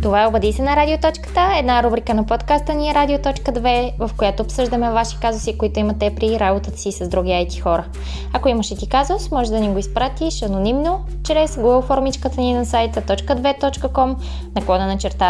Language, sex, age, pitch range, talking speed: Bulgarian, female, 20-39, 195-265 Hz, 190 wpm